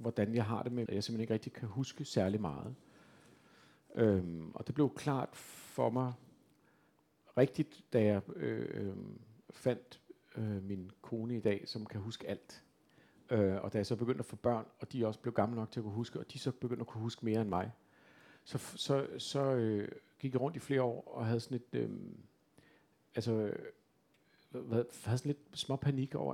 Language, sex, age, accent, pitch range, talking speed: Danish, male, 50-69, native, 105-130 Hz, 200 wpm